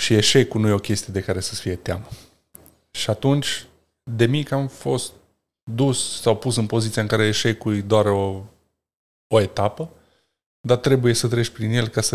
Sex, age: male, 20-39